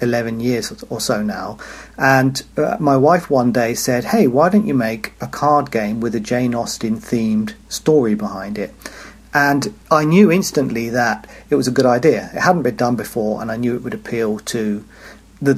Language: English